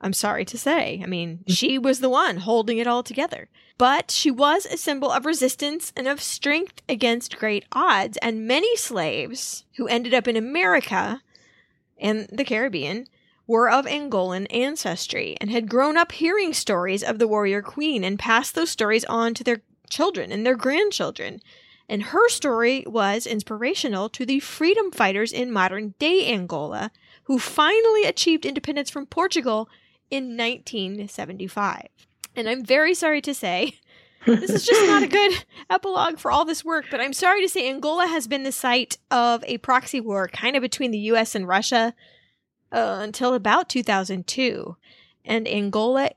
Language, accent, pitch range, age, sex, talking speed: English, American, 215-290 Hz, 10-29, female, 165 wpm